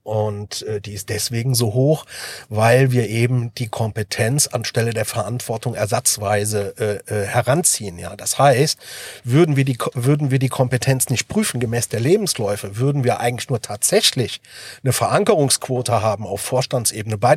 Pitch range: 115-140 Hz